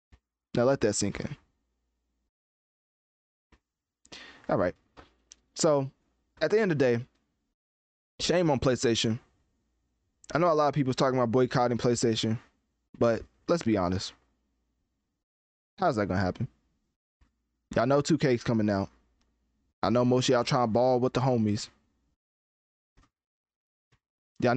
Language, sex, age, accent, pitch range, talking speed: English, male, 20-39, American, 95-130 Hz, 125 wpm